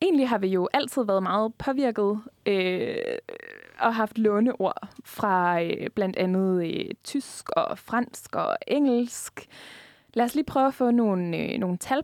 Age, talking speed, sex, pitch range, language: 20-39, 160 wpm, female, 210-275 Hz, Danish